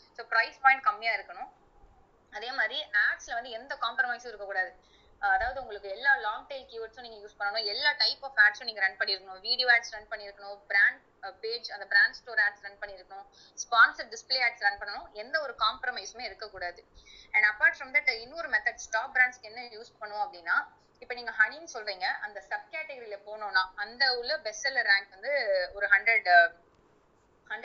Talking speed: 100 wpm